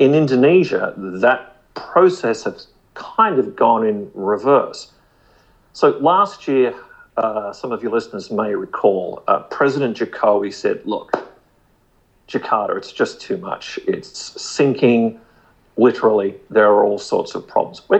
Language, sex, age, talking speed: English, male, 50-69, 130 wpm